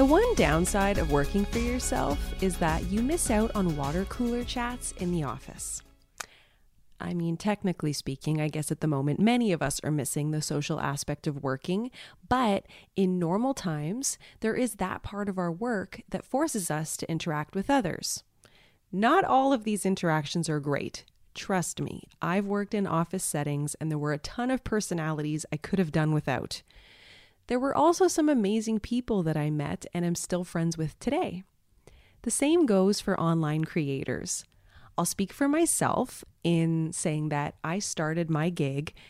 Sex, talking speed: female, 175 wpm